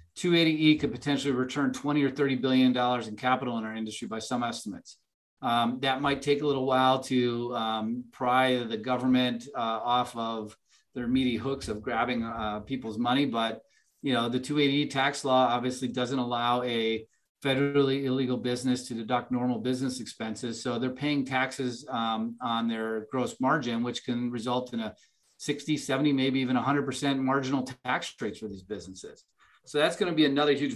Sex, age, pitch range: male, 30-49, 120-140 Hz